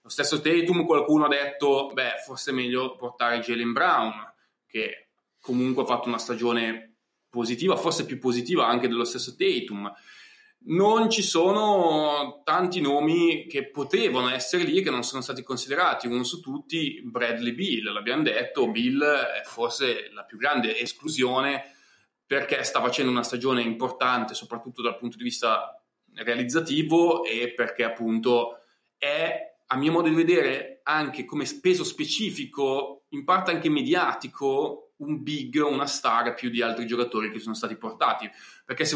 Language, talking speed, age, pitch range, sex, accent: Italian, 150 wpm, 20-39, 120-165 Hz, male, native